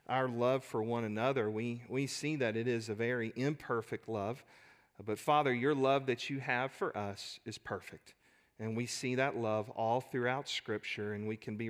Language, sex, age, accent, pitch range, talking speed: English, male, 40-59, American, 105-130 Hz, 195 wpm